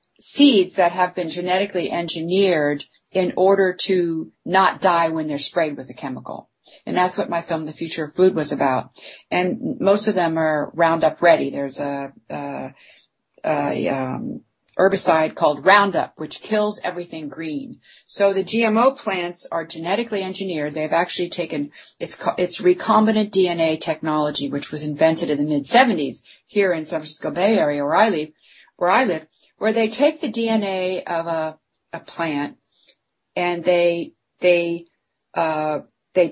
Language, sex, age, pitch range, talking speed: English, female, 40-59, 160-215 Hz, 150 wpm